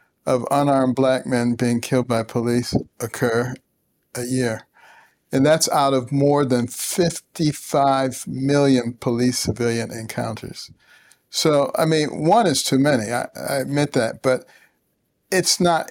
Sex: male